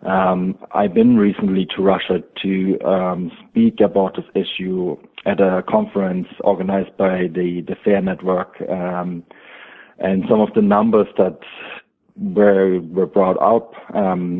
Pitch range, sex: 95-105 Hz, male